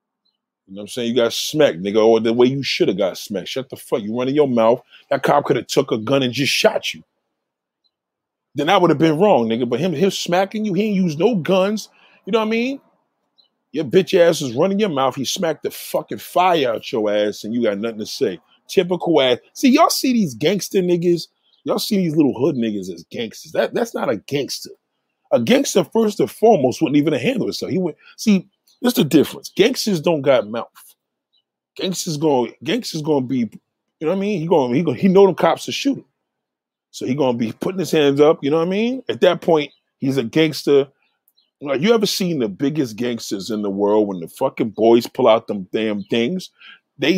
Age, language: 30-49, English